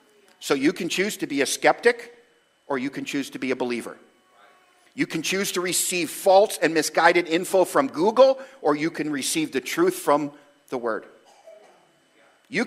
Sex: male